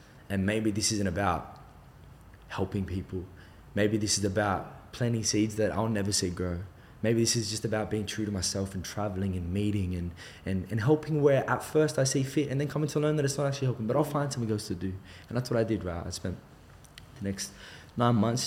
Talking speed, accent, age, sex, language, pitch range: 225 wpm, Australian, 20-39, male, English, 95-110 Hz